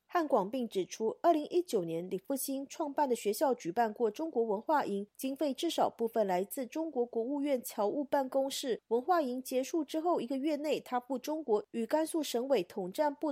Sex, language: female, Chinese